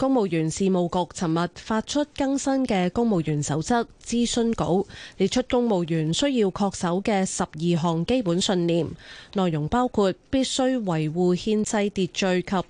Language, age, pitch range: Chinese, 20-39, 165-225 Hz